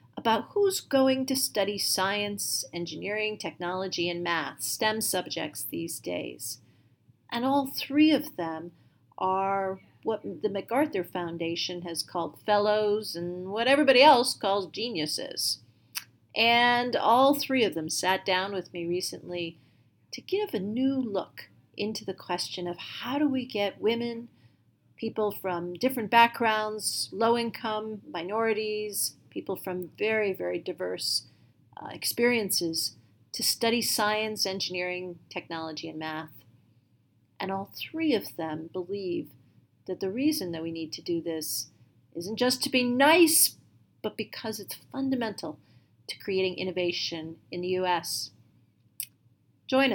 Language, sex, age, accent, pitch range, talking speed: English, female, 40-59, American, 160-220 Hz, 130 wpm